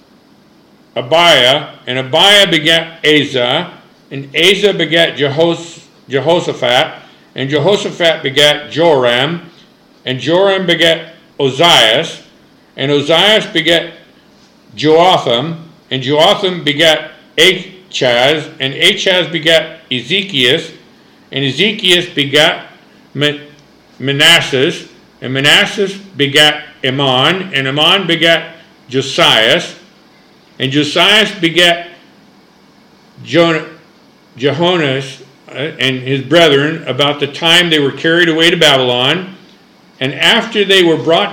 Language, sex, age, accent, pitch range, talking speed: English, male, 50-69, American, 140-175 Hz, 95 wpm